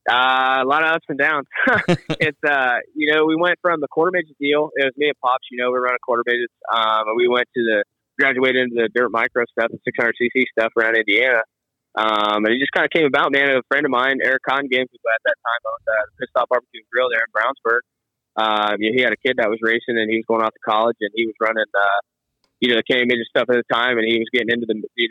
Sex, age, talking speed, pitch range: male, 20-39, 275 wpm, 110-135 Hz